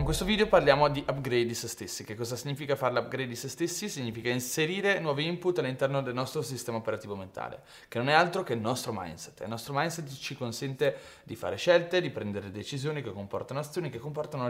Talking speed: 210 wpm